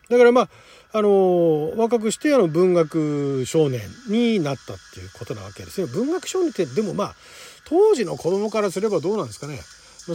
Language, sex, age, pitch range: Japanese, male, 40-59, 150-240 Hz